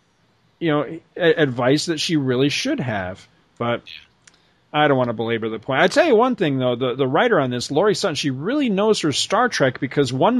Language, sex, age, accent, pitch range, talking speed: English, male, 40-59, American, 130-165 Hz, 215 wpm